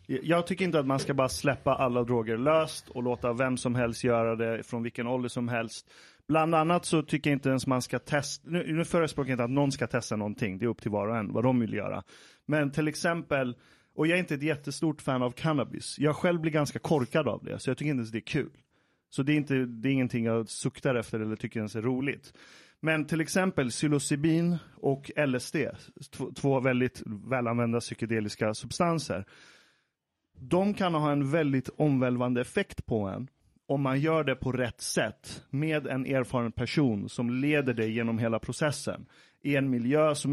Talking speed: 205 wpm